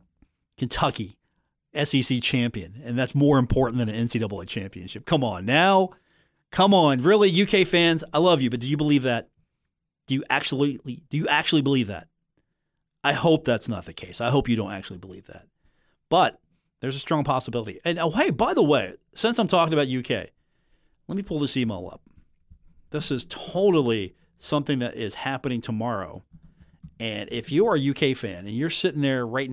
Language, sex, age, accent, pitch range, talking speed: English, male, 40-59, American, 115-160 Hz, 185 wpm